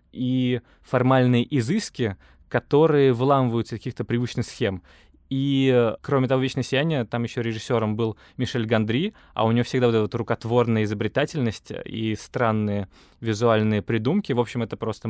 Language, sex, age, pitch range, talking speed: Russian, male, 20-39, 110-135 Hz, 145 wpm